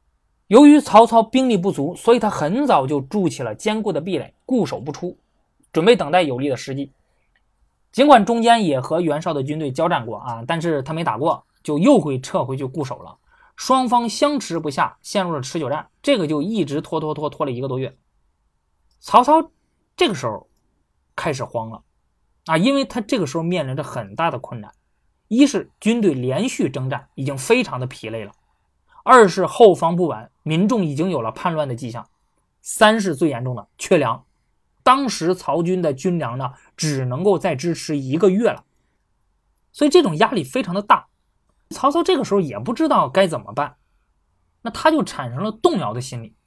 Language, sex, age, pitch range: Chinese, male, 20-39, 135-230 Hz